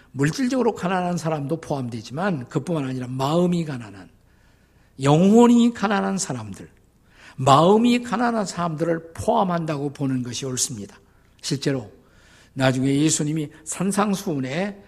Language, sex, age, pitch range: Korean, male, 50-69, 130-195 Hz